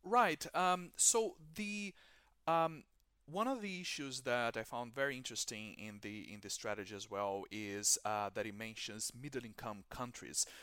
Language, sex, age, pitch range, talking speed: English, male, 30-49, 100-125 Hz, 165 wpm